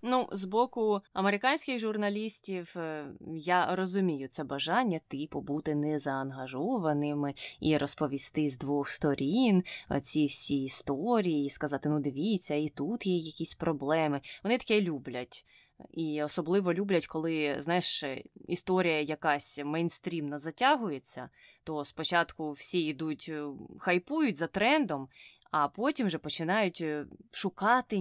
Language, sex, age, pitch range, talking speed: Ukrainian, female, 20-39, 150-195 Hz, 115 wpm